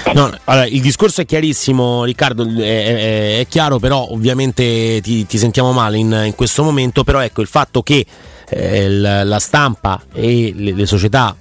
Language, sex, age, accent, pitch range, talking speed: Italian, male, 30-49, native, 100-125 Hz, 160 wpm